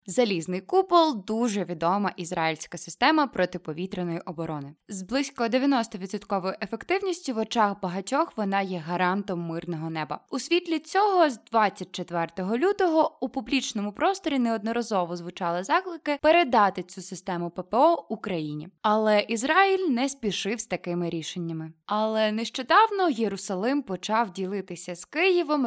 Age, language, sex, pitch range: 20-39, Ukrainian, female, 180-260 Hz